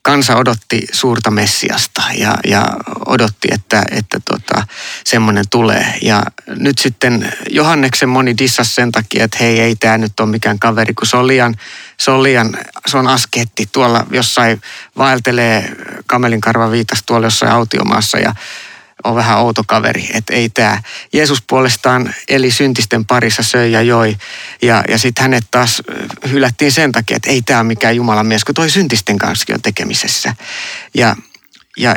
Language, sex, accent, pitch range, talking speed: Finnish, male, native, 110-135 Hz, 160 wpm